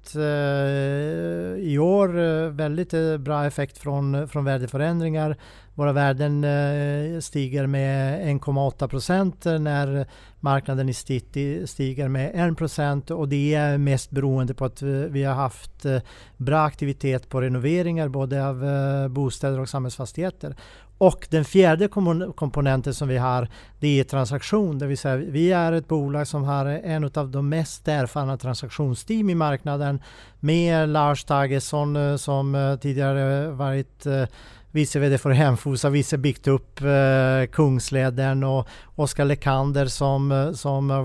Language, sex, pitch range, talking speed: Swedish, male, 135-150 Hz, 125 wpm